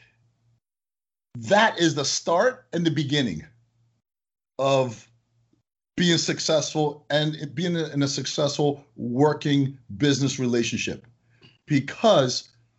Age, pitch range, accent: 50-69, 120-155 Hz, American